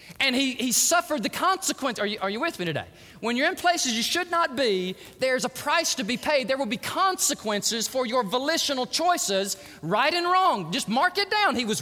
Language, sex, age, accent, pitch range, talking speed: English, male, 30-49, American, 255-350 Hz, 225 wpm